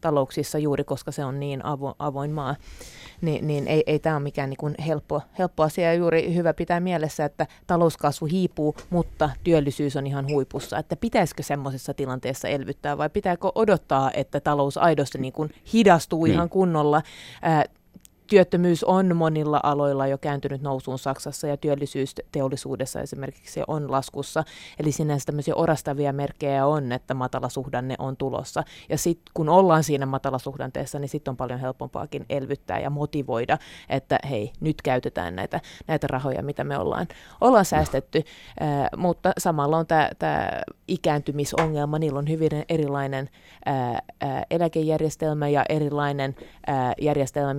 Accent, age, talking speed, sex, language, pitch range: native, 20-39, 145 wpm, female, Finnish, 140-160 Hz